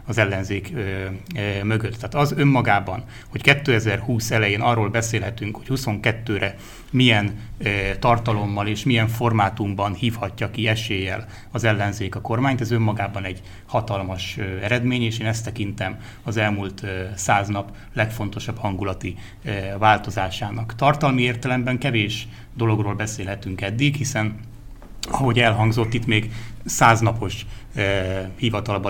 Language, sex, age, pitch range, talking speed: Hungarian, male, 30-49, 100-115 Hz, 115 wpm